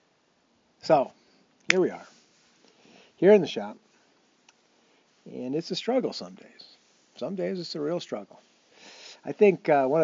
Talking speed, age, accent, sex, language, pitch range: 145 wpm, 50-69, American, male, English, 130-180 Hz